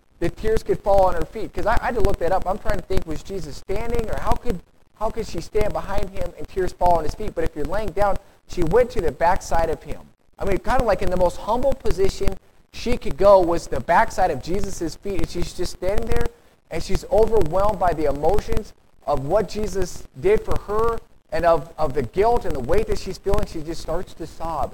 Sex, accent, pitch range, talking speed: male, American, 165-205 Hz, 245 wpm